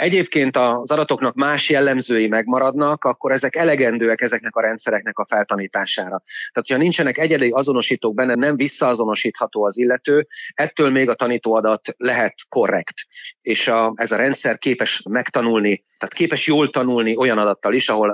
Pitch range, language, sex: 110-150 Hz, Hungarian, male